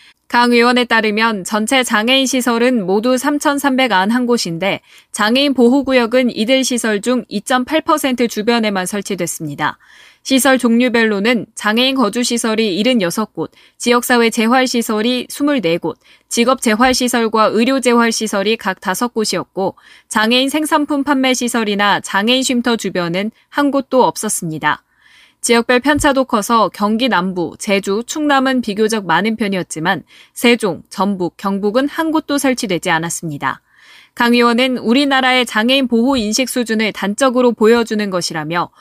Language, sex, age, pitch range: Korean, female, 20-39, 195-255 Hz